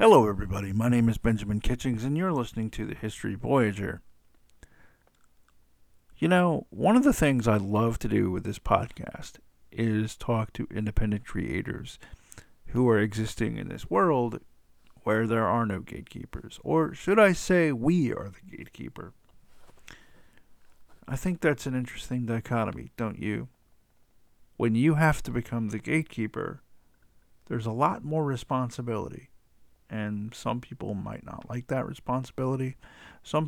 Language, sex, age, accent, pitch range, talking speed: English, male, 50-69, American, 110-145 Hz, 145 wpm